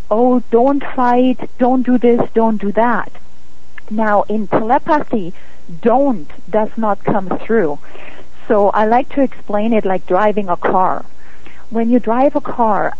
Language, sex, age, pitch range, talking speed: English, female, 50-69, 210-255 Hz, 150 wpm